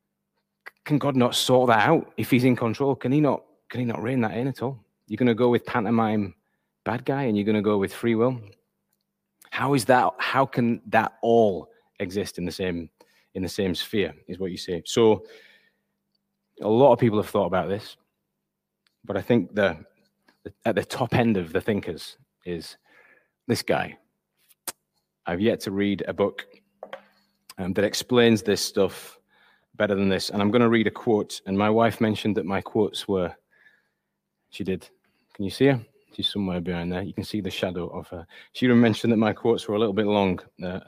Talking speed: 200 wpm